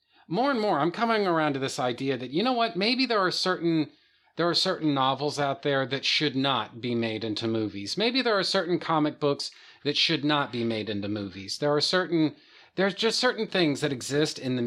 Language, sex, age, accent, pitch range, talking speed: English, male, 40-59, American, 125-170 Hz, 220 wpm